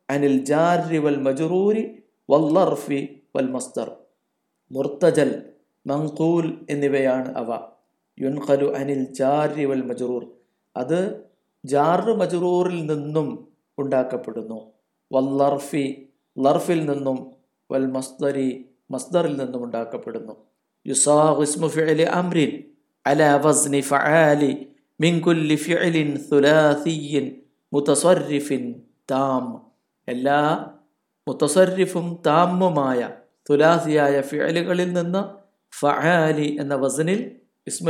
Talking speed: 80 wpm